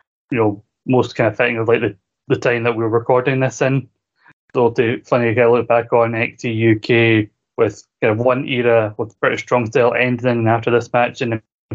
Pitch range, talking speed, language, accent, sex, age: 115-125 Hz, 225 wpm, English, British, male, 20-39